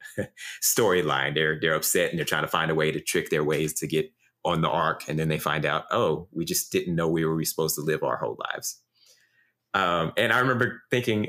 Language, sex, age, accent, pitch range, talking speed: English, male, 30-49, American, 80-110 Hz, 230 wpm